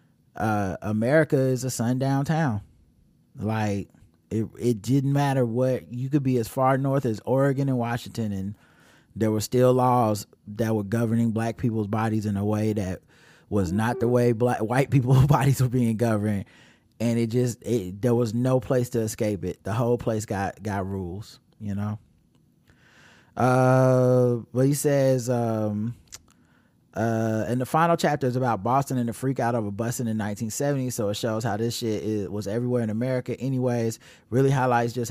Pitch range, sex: 105-130 Hz, male